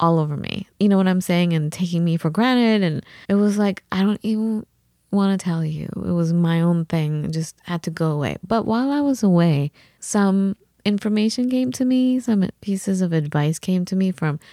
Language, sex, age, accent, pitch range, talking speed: English, female, 20-39, American, 155-195 Hz, 220 wpm